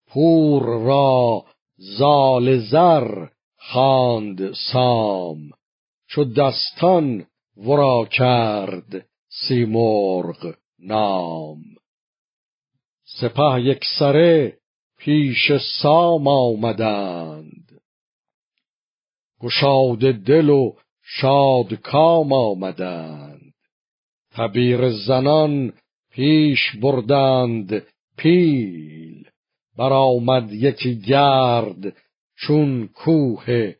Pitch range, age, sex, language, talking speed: 110-140 Hz, 50-69, male, Persian, 55 wpm